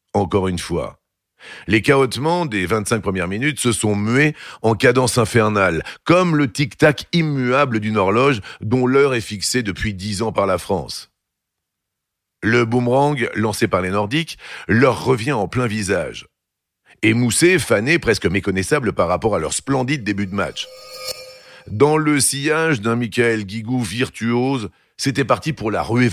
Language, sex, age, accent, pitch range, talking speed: French, male, 50-69, French, 105-135 Hz, 150 wpm